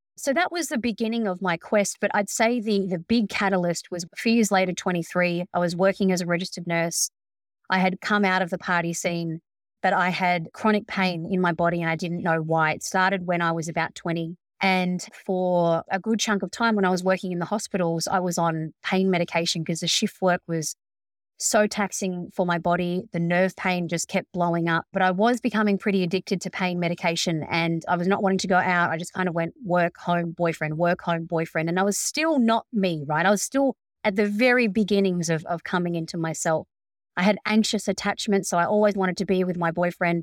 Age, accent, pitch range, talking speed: 30-49, Australian, 170-205 Hz, 225 wpm